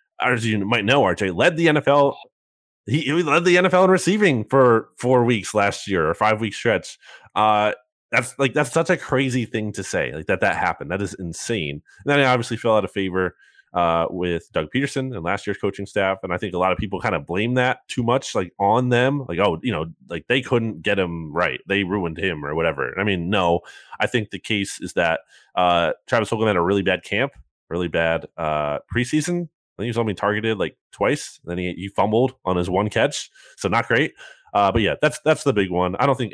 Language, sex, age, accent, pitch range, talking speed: English, male, 30-49, American, 90-120 Hz, 235 wpm